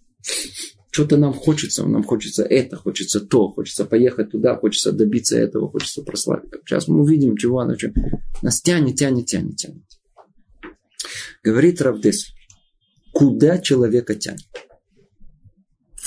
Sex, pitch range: male, 115-165 Hz